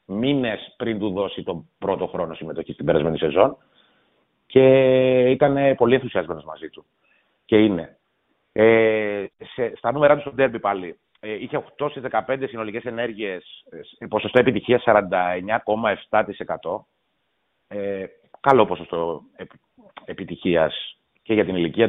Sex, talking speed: male, 120 wpm